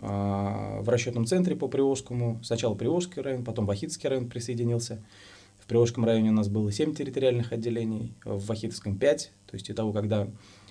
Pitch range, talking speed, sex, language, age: 100-125 Hz, 165 wpm, male, Russian, 20-39